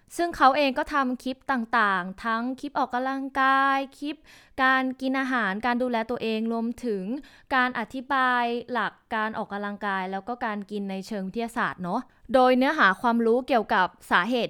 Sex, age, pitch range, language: female, 20-39, 210-260 Hz, Thai